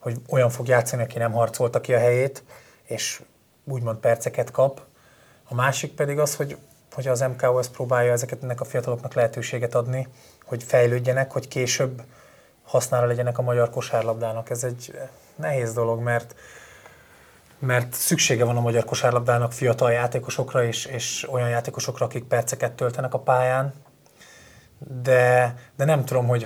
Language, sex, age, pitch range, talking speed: Hungarian, male, 20-39, 120-135 Hz, 145 wpm